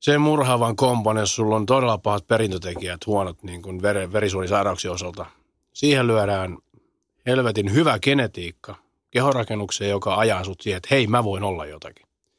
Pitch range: 95-125 Hz